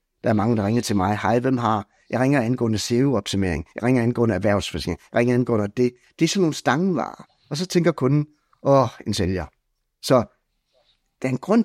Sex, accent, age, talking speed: male, Danish, 60-79, 200 wpm